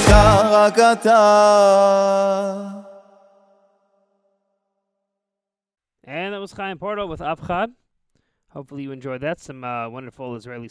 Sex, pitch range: male, 120-165 Hz